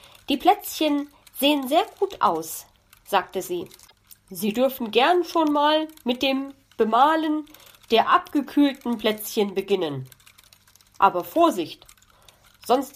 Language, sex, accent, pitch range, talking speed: German, female, German, 200-300 Hz, 105 wpm